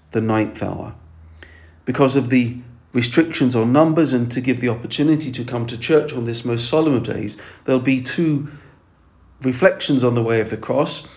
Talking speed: 185 wpm